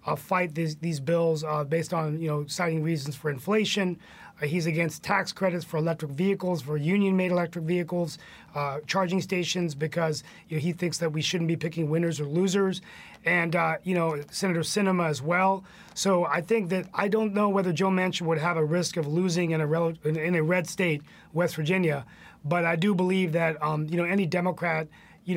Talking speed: 205 wpm